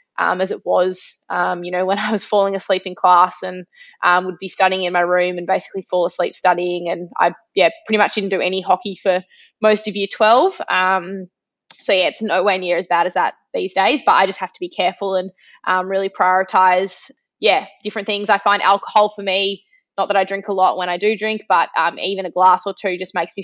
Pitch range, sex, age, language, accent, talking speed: 180-200 Hz, female, 20-39, English, Australian, 235 wpm